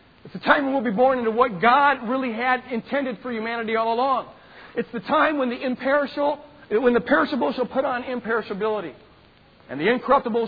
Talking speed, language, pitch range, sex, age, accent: 190 wpm, English, 200-270 Hz, male, 50-69, American